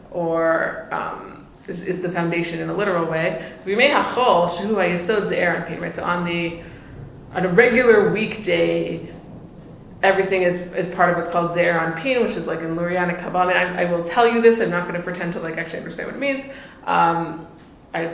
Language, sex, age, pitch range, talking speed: English, female, 20-39, 170-205 Hz, 185 wpm